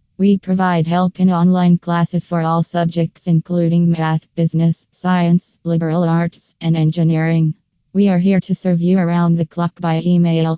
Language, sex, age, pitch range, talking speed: English, female, 20-39, 160-175 Hz, 160 wpm